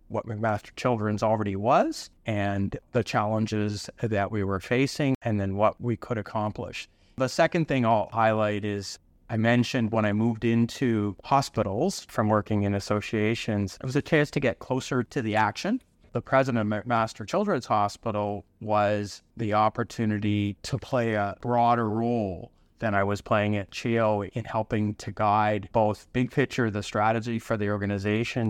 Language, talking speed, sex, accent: English, 160 wpm, male, American